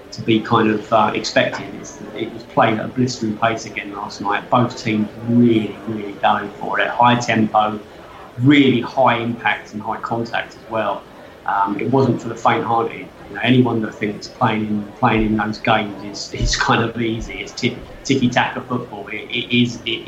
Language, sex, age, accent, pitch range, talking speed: English, male, 20-39, British, 105-125 Hz, 175 wpm